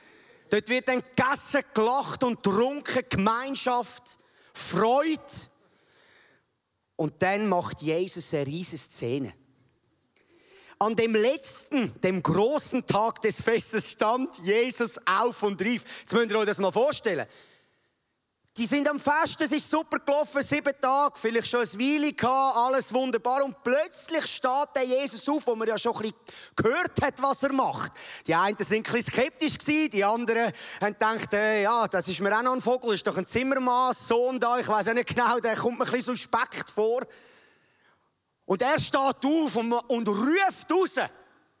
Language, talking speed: German, 165 wpm